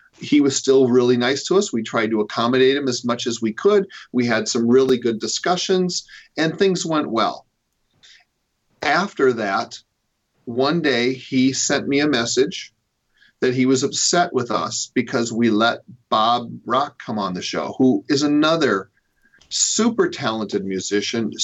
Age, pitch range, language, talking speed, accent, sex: 40-59, 115-145 Hz, English, 160 wpm, American, male